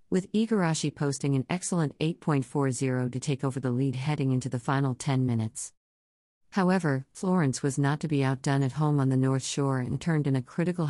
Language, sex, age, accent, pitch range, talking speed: English, female, 50-69, American, 130-155 Hz, 195 wpm